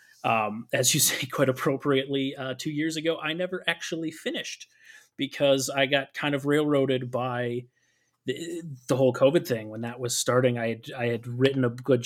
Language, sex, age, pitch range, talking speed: English, male, 30-49, 120-140 Hz, 185 wpm